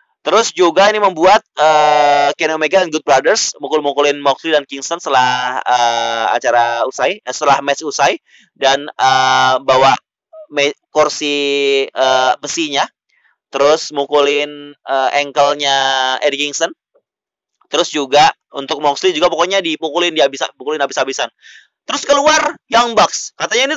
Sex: male